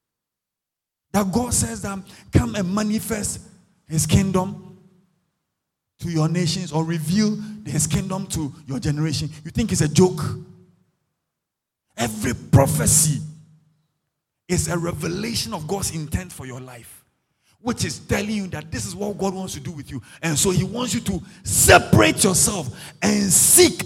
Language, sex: English, male